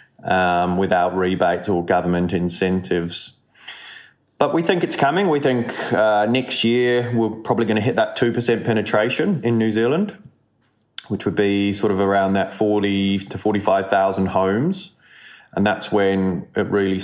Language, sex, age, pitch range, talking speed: English, male, 20-39, 95-115 Hz, 150 wpm